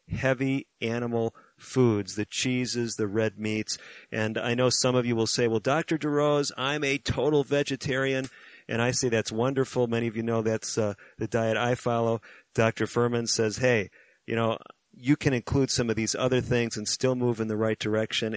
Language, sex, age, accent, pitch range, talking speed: English, male, 40-59, American, 105-125 Hz, 195 wpm